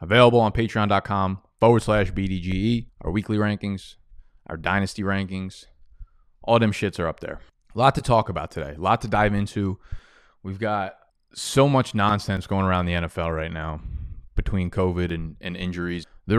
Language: English